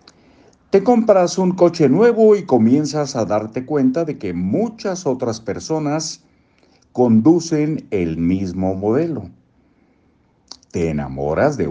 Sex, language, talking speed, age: male, Spanish, 115 wpm, 60-79